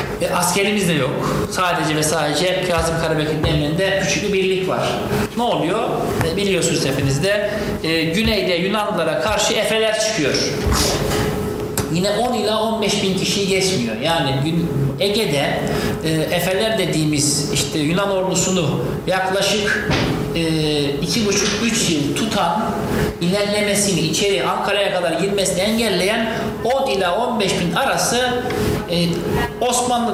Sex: male